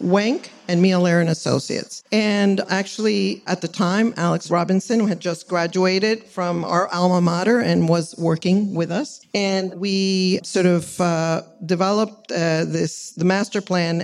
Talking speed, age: 150 wpm, 50-69